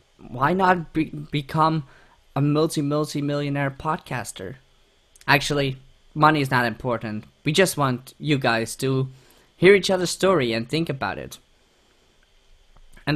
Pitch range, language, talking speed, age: 130-160 Hz, English, 120 wpm, 20-39